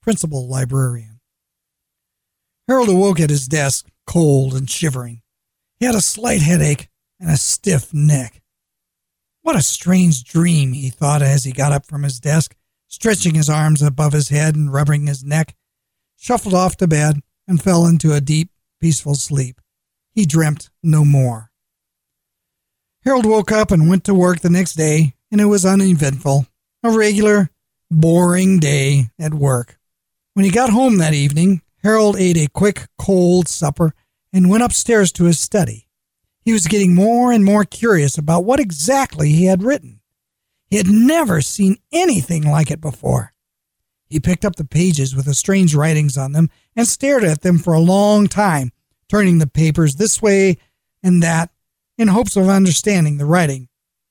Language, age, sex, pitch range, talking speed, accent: English, 50-69, male, 145-195 Hz, 165 wpm, American